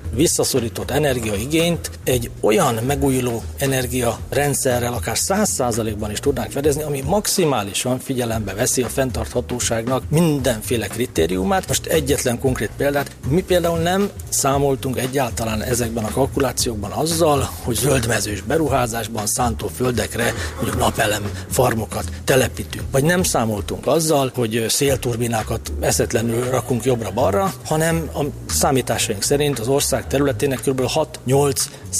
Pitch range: 110-135 Hz